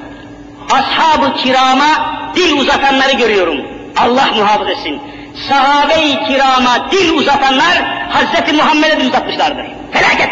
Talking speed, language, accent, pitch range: 100 wpm, Turkish, native, 250-300 Hz